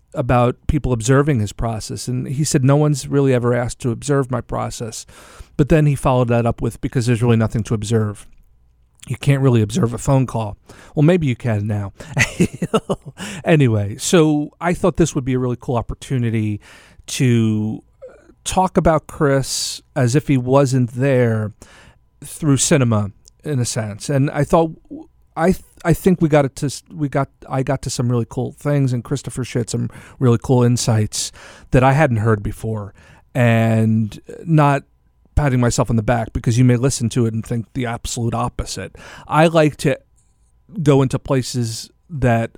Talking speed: 175 wpm